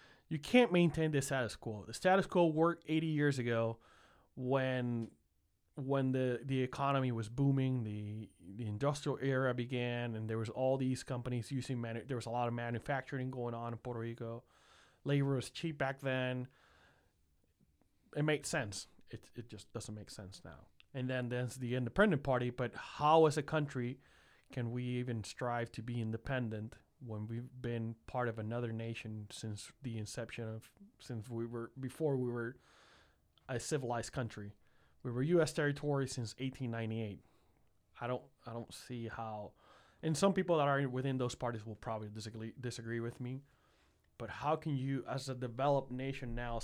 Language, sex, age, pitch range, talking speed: English, male, 30-49, 115-135 Hz, 170 wpm